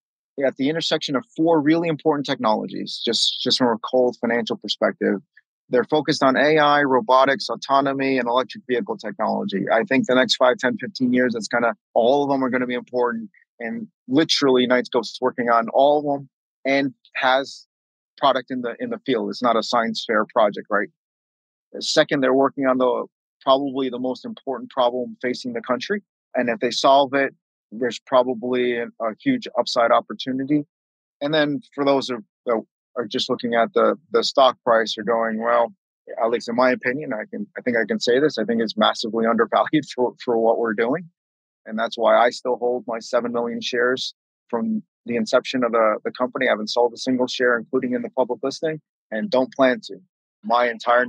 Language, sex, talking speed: English, male, 195 wpm